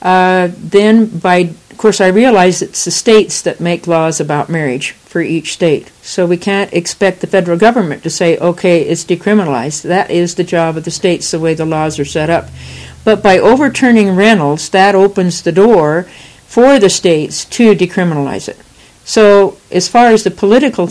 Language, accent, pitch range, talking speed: English, American, 170-200 Hz, 185 wpm